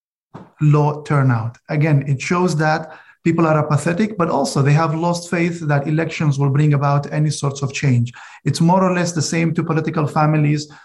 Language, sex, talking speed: English, male, 185 wpm